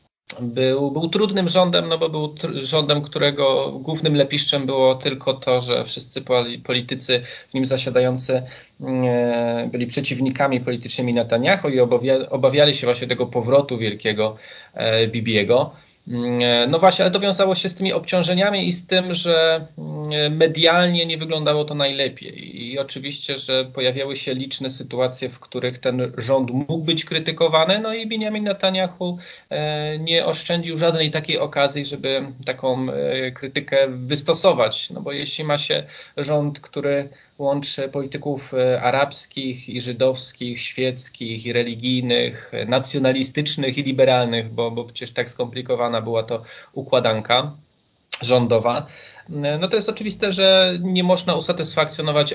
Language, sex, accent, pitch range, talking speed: Polish, male, native, 125-155 Hz, 135 wpm